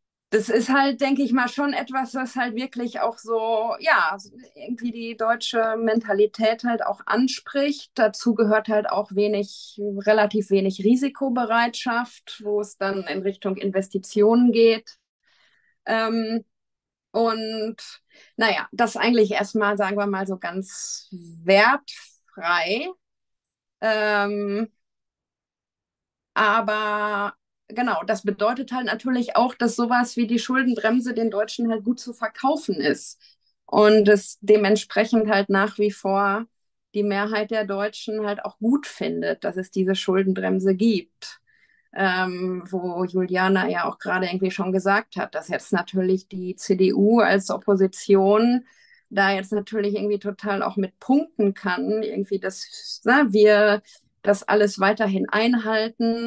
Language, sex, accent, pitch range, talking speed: German, female, German, 200-235 Hz, 130 wpm